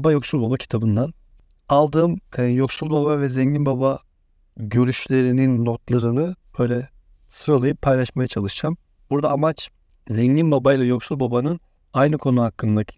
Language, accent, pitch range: Turkish, native, 110-155 Hz